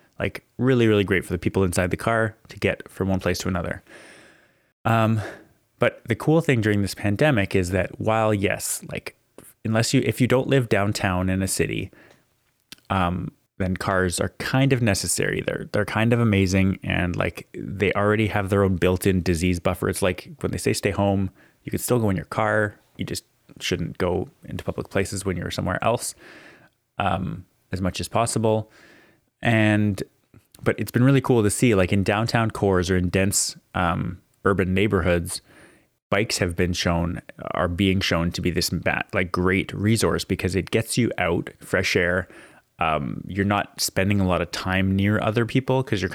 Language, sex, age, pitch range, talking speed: English, male, 20-39, 90-110 Hz, 185 wpm